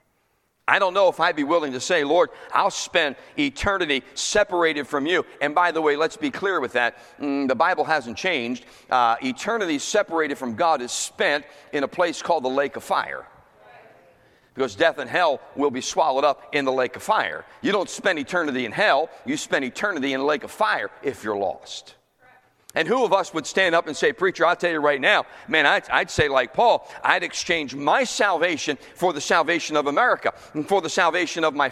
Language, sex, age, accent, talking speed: English, male, 40-59, American, 210 wpm